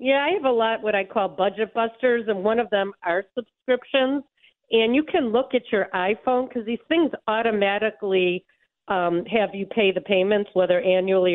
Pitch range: 190-235 Hz